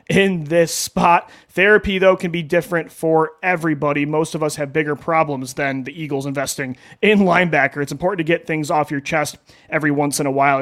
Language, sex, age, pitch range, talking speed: English, male, 30-49, 145-180 Hz, 200 wpm